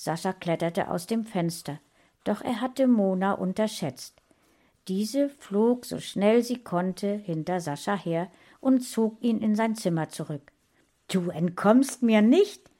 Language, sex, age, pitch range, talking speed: German, female, 60-79, 160-215 Hz, 140 wpm